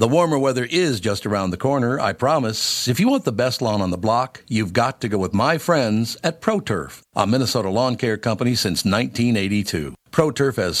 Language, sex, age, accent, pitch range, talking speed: English, male, 60-79, American, 100-135 Hz, 205 wpm